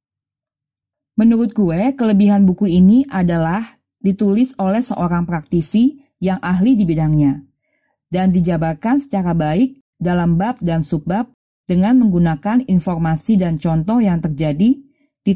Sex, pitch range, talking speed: female, 170-220 Hz, 115 wpm